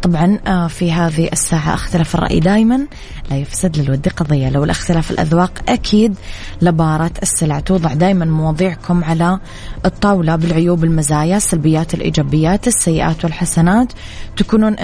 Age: 20-39